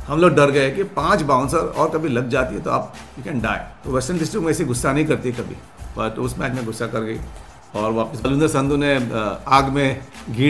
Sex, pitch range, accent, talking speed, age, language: male, 110-140 Hz, native, 230 wpm, 50-69, Hindi